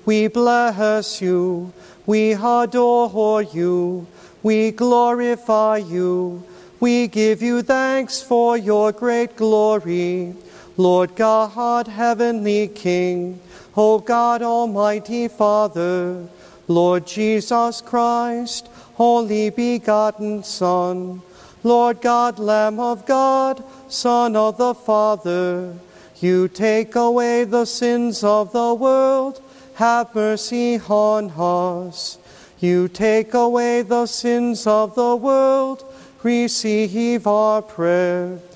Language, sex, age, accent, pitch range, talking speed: English, male, 40-59, American, 185-240 Hz, 100 wpm